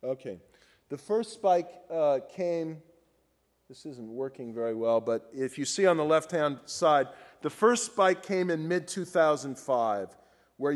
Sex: male